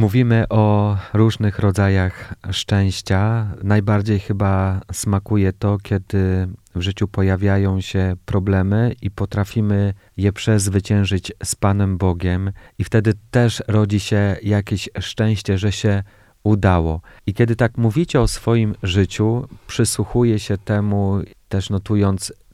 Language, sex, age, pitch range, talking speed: Polish, male, 40-59, 95-105 Hz, 115 wpm